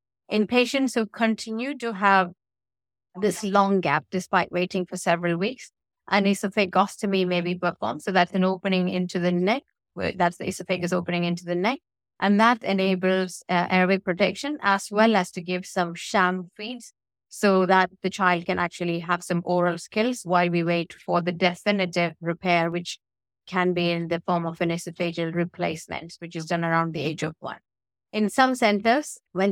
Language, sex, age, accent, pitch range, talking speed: English, female, 30-49, Indian, 175-200 Hz, 175 wpm